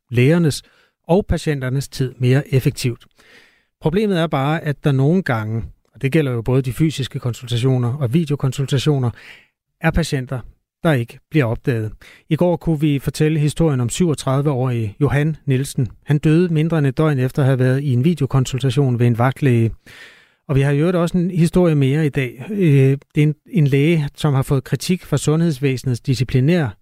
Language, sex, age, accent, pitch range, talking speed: Danish, male, 30-49, native, 125-150 Hz, 170 wpm